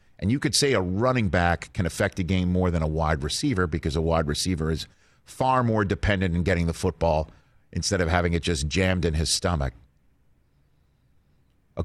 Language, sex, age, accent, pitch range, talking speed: English, male, 50-69, American, 85-110 Hz, 190 wpm